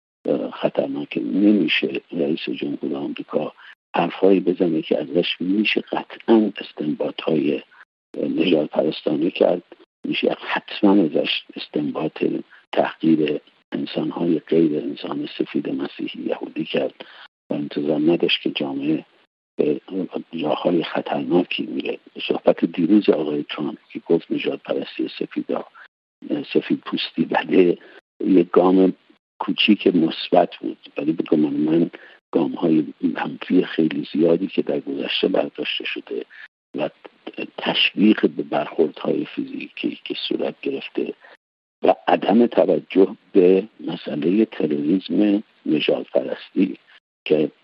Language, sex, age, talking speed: Persian, male, 60-79, 105 wpm